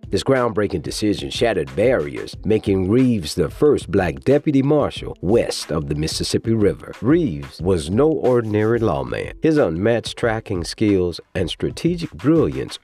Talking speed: 135 wpm